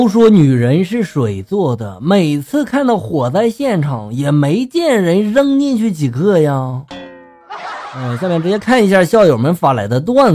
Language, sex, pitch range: Chinese, male, 130-220 Hz